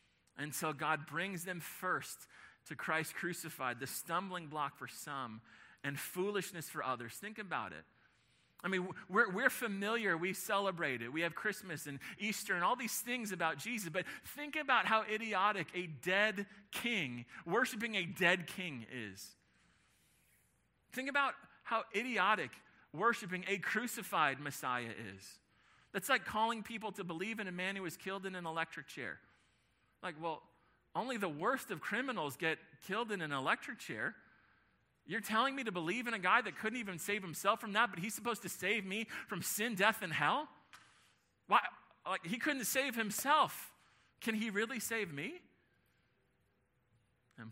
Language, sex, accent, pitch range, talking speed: English, male, American, 140-215 Hz, 160 wpm